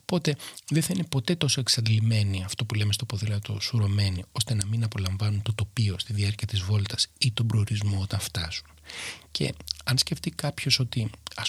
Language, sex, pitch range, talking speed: Greek, male, 105-130 Hz, 180 wpm